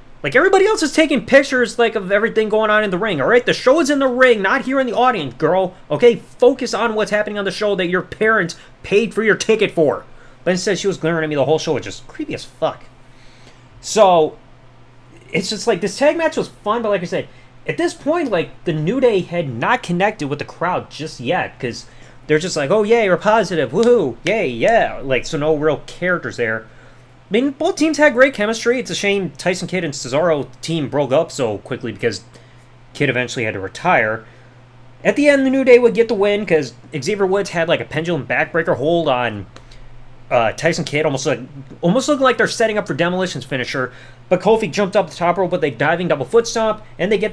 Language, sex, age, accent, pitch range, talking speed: English, male, 30-49, American, 130-220 Hz, 225 wpm